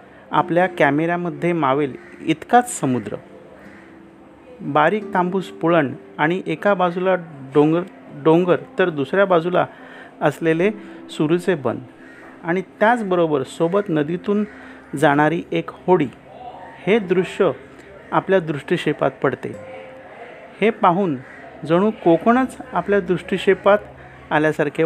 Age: 50-69